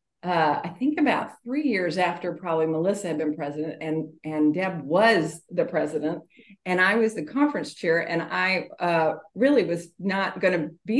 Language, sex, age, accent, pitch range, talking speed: English, female, 50-69, American, 175-230 Hz, 180 wpm